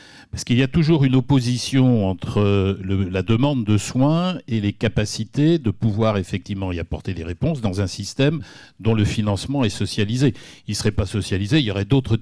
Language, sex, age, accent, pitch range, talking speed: French, male, 60-79, French, 95-120 Hz, 190 wpm